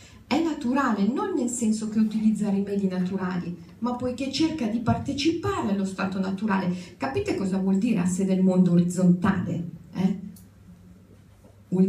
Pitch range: 180-235 Hz